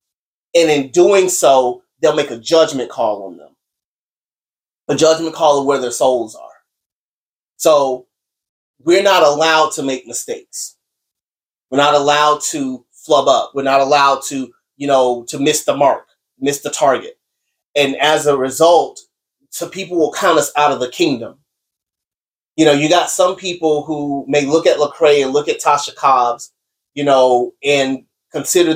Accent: American